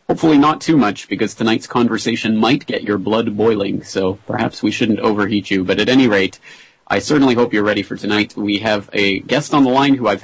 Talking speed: 225 wpm